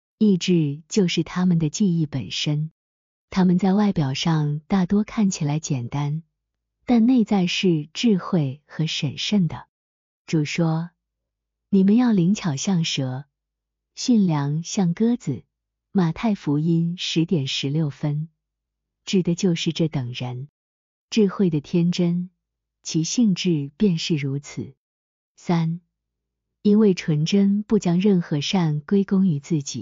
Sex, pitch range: female, 145-195 Hz